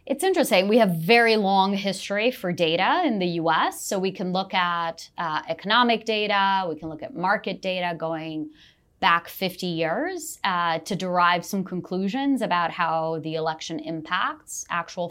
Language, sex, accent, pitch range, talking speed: English, female, American, 165-215 Hz, 165 wpm